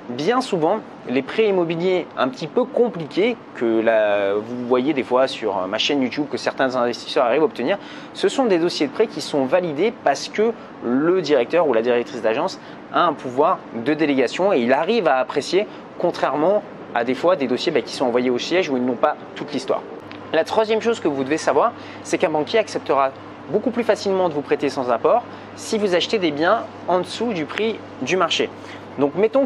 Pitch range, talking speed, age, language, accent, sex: 140-225 Hz, 205 wpm, 30-49, French, French, male